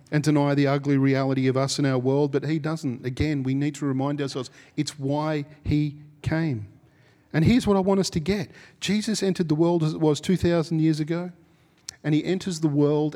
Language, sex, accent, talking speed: English, male, Australian, 210 wpm